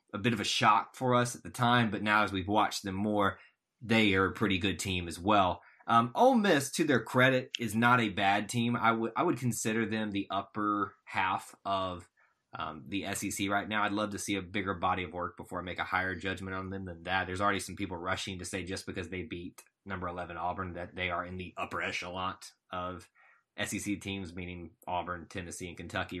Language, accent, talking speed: English, American, 225 wpm